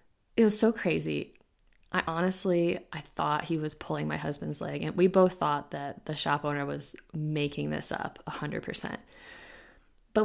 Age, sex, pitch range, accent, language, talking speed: 20-39, female, 150-180 Hz, American, English, 175 wpm